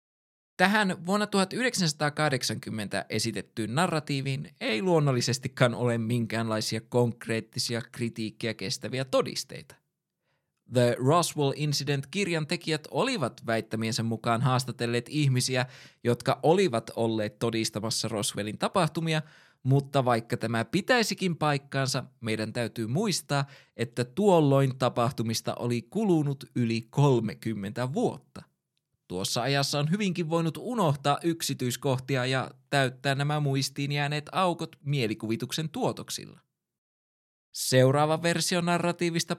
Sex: male